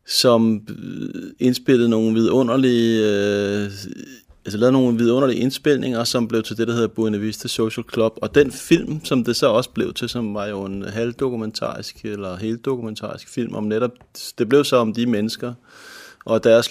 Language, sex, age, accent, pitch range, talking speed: Danish, male, 30-49, native, 110-125 Hz, 160 wpm